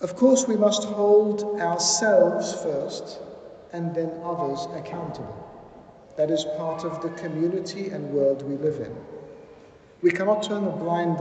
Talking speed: 145 wpm